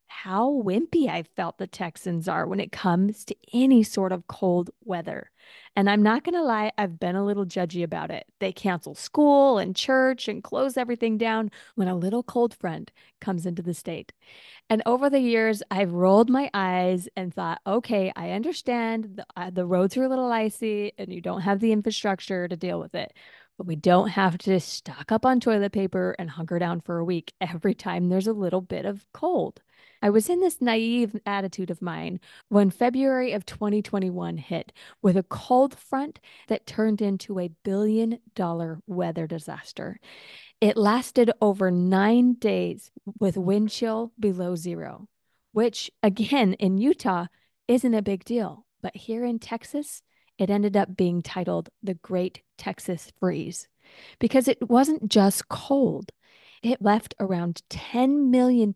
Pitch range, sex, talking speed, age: 185-230 Hz, female, 170 wpm, 20-39